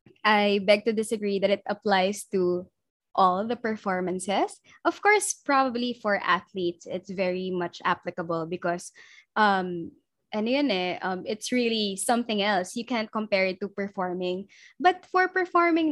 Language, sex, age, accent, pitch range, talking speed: English, female, 20-39, Filipino, 190-240 Hz, 145 wpm